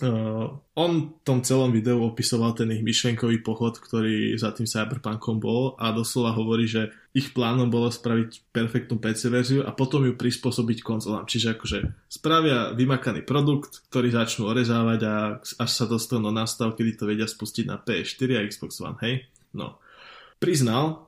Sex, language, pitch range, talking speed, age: male, Slovak, 110-125 Hz, 160 wpm, 20-39